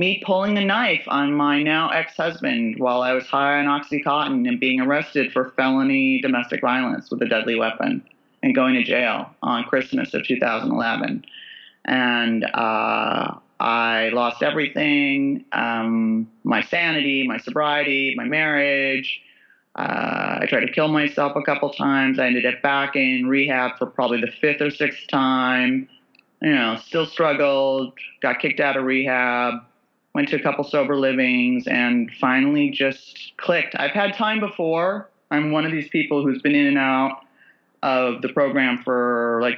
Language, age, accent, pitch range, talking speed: English, 30-49, American, 130-165 Hz, 160 wpm